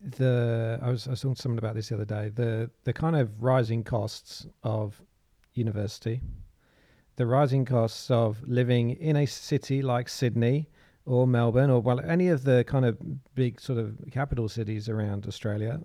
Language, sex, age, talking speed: English, male, 40-59, 175 wpm